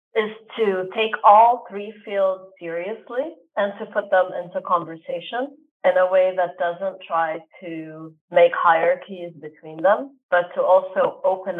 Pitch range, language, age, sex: 175-220 Hz, English, 30-49, female